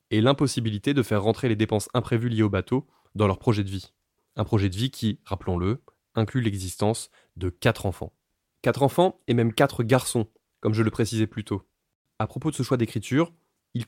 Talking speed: 200 wpm